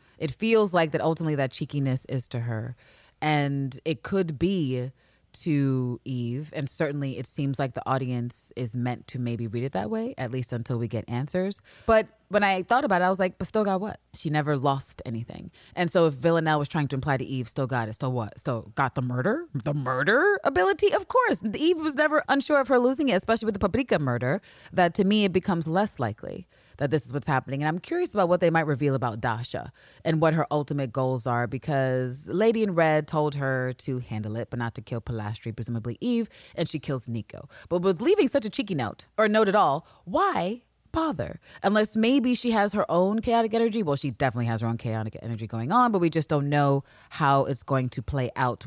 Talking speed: 225 wpm